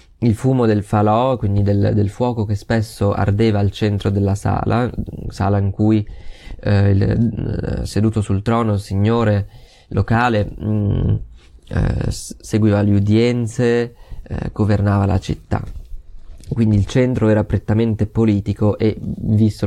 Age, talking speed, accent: 20-39, 130 wpm, native